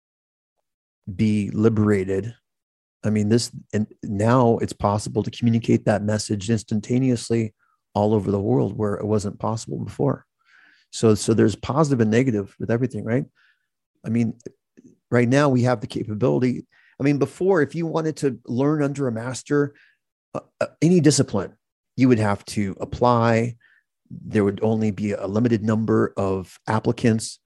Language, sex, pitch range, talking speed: English, male, 105-125 Hz, 150 wpm